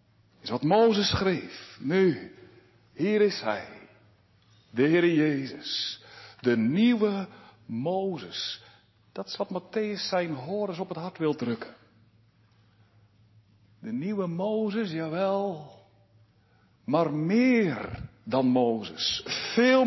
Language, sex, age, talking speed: Dutch, male, 60-79, 105 wpm